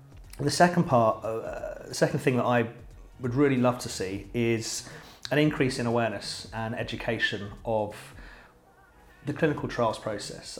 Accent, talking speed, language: British, 145 wpm, English